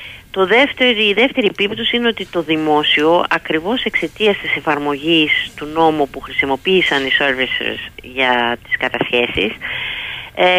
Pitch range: 150-210 Hz